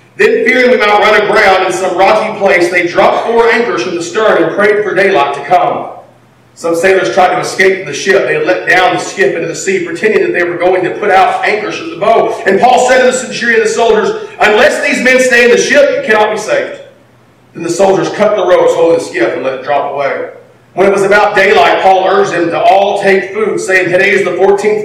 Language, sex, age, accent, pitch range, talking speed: English, male, 40-59, American, 165-215 Hz, 245 wpm